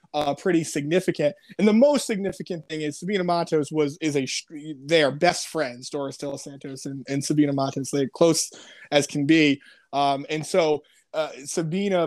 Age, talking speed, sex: 20-39, 170 wpm, male